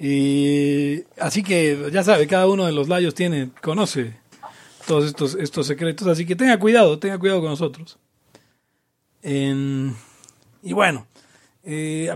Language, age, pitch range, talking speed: Spanish, 40-59, 145-200 Hz, 140 wpm